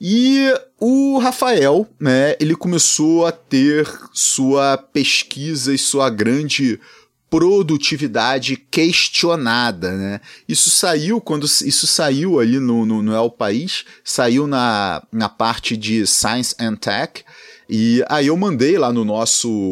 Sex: male